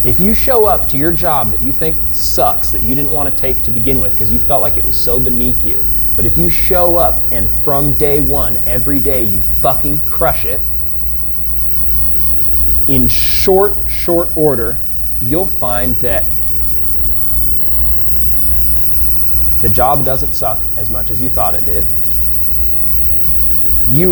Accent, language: American, English